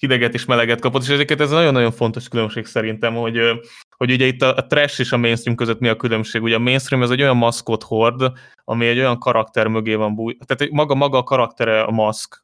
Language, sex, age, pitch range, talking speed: Hungarian, male, 20-39, 110-130 Hz, 230 wpm